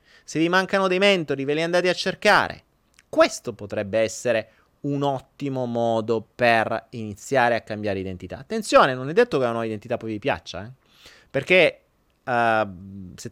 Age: 30-49